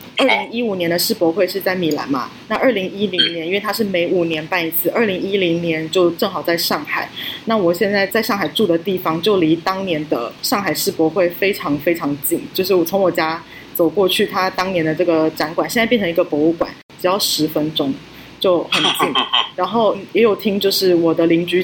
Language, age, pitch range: Chinese, 20-39, 160-200 Hz